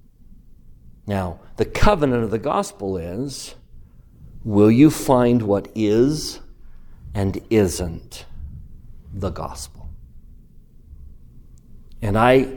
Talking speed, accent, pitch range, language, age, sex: 85 wpm, American, 85-125 Hz, English, 50-69, male